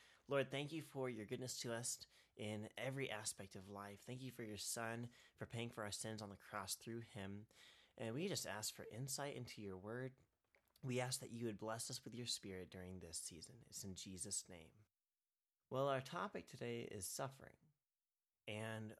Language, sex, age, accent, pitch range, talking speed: English, male, 30-49, American, 100-125 Hz, 195 wpm